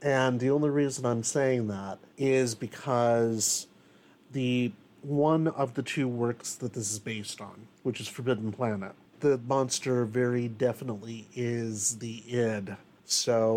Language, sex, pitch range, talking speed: English, male, 115-135 Hz, 140 wpm